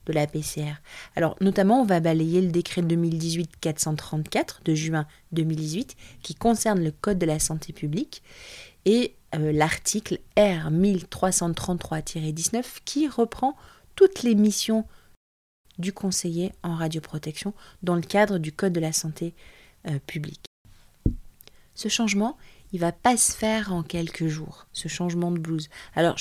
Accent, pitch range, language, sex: French, 160-195 Hz, French, female